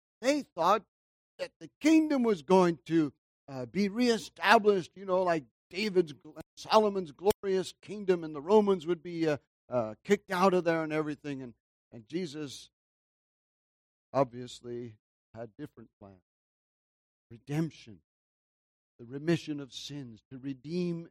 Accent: American